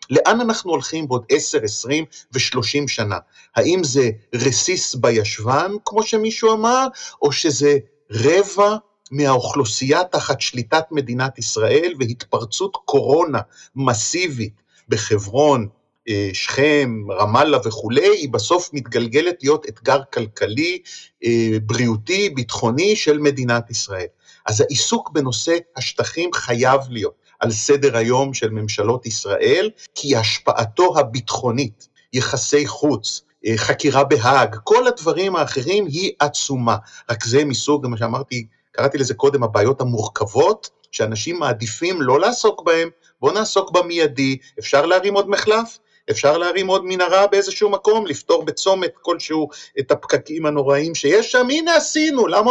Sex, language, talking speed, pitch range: male, Hebrew, 120 wpm, 125-205 Hz